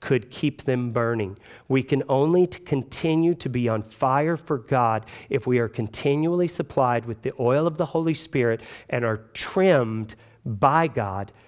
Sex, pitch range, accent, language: male, 105-130 Hz, American, English